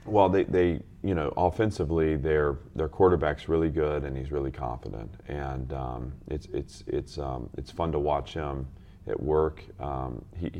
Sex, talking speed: male, 165 wpm